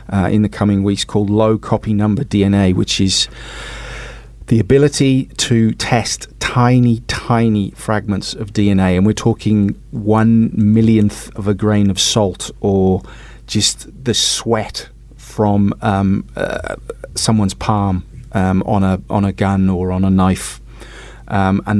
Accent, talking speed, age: British, 145 wpm, 30-49